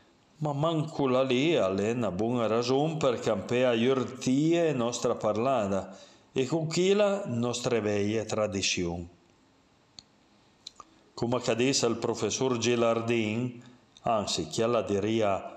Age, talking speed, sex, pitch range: 40-59, 100 wpm, male, 105-130 Hz